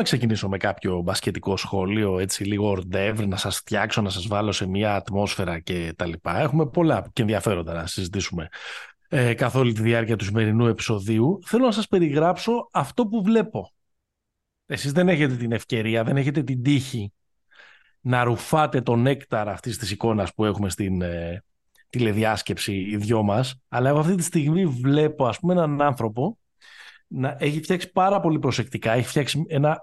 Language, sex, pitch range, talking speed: Greek, male, 105-145 Hz, 170 wpm